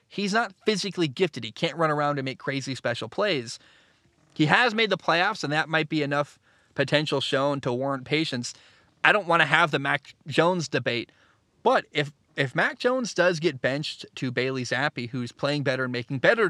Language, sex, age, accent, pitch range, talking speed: English, male, 20-39, American, 130-185 Hz, 195 wpm